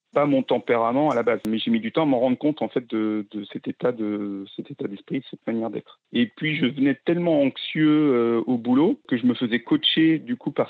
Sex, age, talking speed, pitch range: male, 40-59, 260 wpm, 115-150 Hz